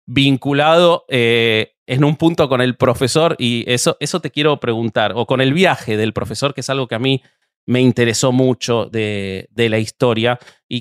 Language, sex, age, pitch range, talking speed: Spanish, male, 30-49, 115-150 Hz, 190 wpm